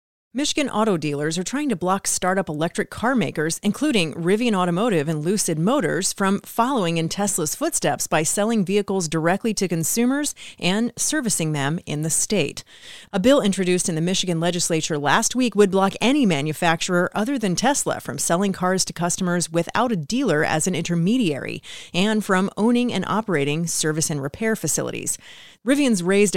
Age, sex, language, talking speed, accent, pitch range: 30-49, female, English, 165 wpm, American, 165-210 Hz